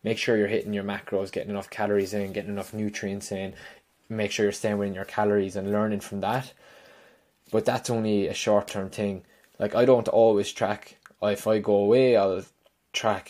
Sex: male